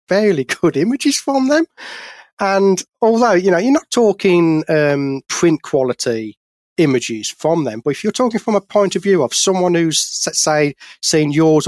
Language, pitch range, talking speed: English, 125-175 Hz, 170 wpm